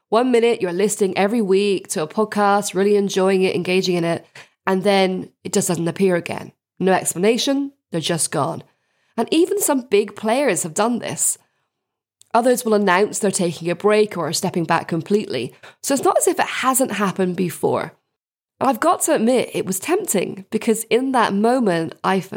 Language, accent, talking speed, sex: English, British, 185 wpm, female